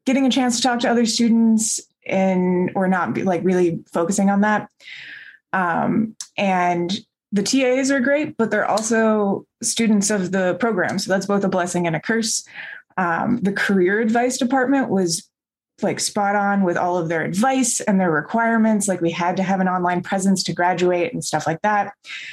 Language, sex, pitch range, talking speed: English, female, 180-225 Hz, 185 wpm